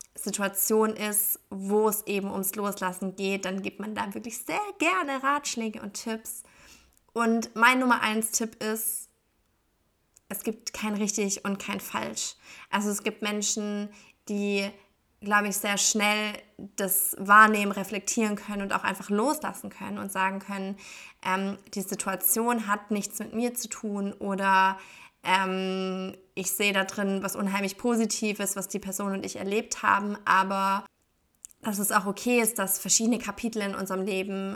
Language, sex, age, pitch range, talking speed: German, female, 20-39, 195-225 Hz, 155 wpm